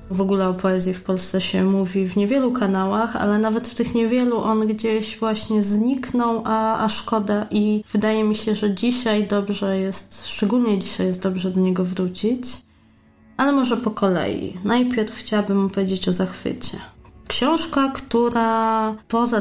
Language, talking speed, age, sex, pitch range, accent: Polish, 155 wpm, 20-39, female, 195-225 Hz, native